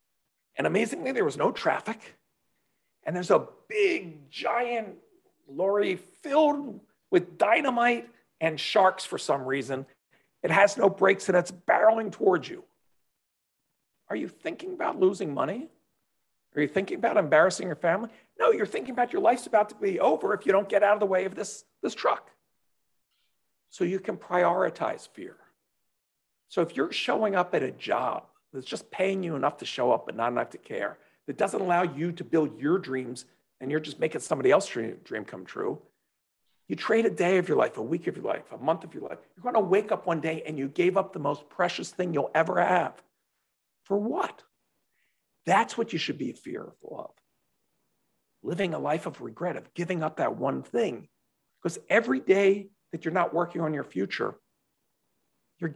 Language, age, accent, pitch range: English, 50-69, American, 165-230 Hz